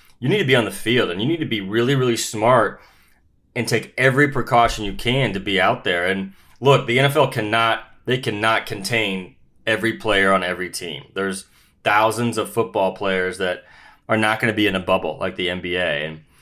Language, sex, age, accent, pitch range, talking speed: English, male, 30-49, American, 100-130 Hz, 205 wpm